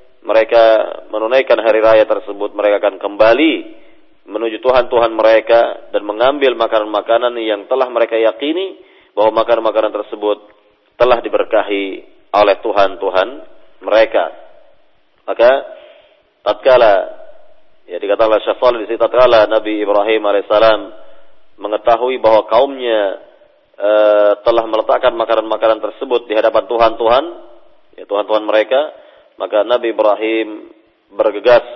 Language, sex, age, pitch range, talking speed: Malay, male, 40-59, 105-125 Hz, 105 wpm